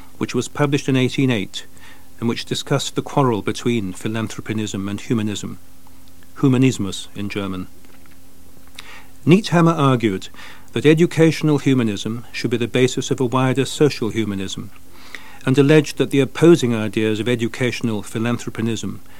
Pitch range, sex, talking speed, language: 95-135 Hz, male, 125 wpm, English